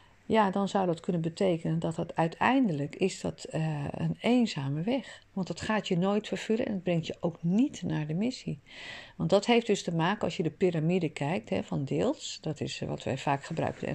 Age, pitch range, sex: 40-59, 150-200 Hz, female